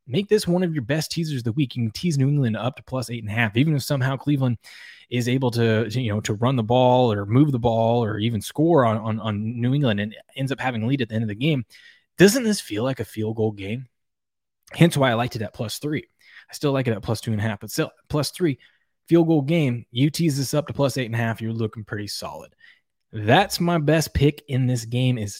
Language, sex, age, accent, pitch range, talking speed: English, male, 20-39, American, 115-145 Hz, 270 wpm